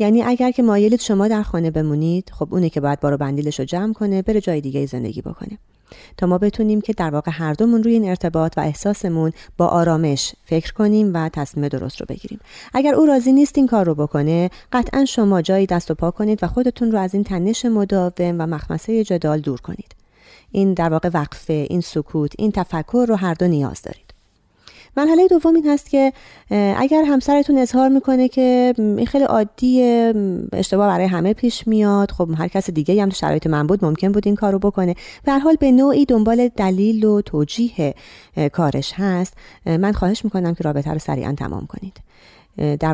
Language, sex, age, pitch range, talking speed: Persian, female, 30-49, 155-215 Hz, 190 wpm